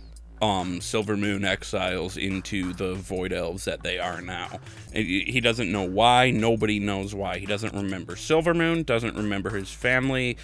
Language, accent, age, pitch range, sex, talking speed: English, American, 30-49, 95-120 Hz, male, 160 wpm